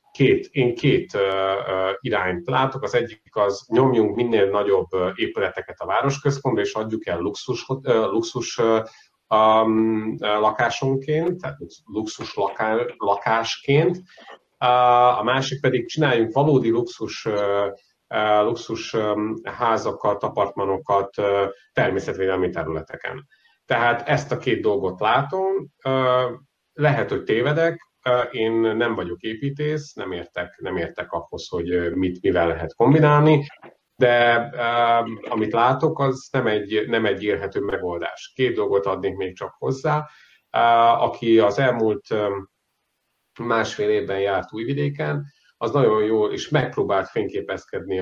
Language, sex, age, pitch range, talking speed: Hungarian, male, 30-49, 100-135 Hz, 110 wpm